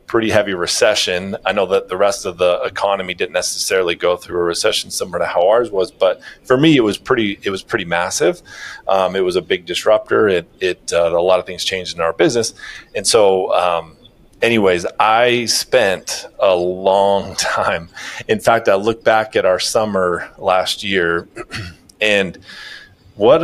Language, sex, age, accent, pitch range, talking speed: English, male, 30-49, American, 95-120 Hz, 180 wpm